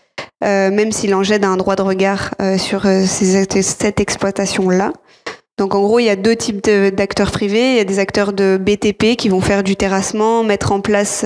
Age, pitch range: 20-39, 195-220 Hz